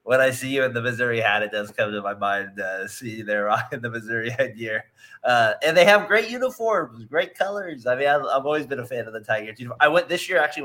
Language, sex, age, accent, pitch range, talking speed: English, male, 20-39, American, 115-150 Hz, 270 wpm